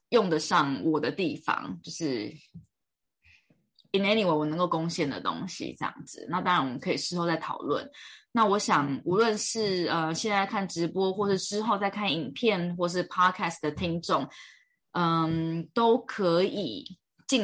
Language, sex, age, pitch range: Chinese, female, 20-39, 170-235 Hz